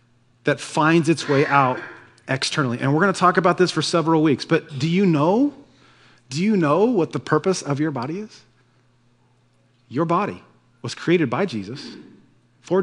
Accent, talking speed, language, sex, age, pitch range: American, 170 wpm, English, male, 40-59, 125-160 Hz